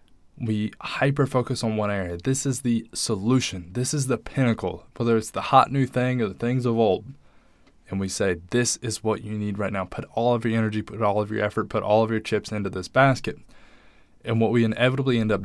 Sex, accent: male, American